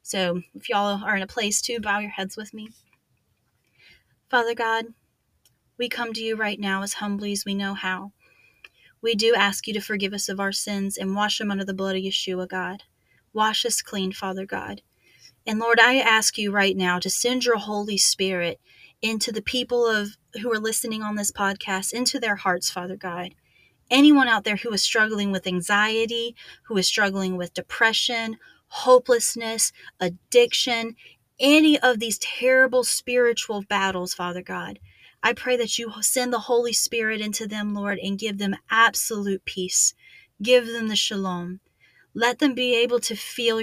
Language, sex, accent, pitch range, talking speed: English, female, American, 195-230 Hz, 175 wpm